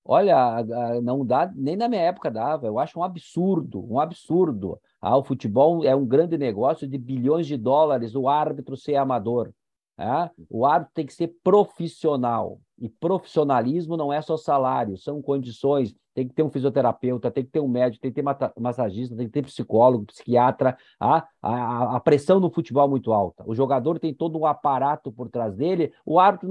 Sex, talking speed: male, 180 wpm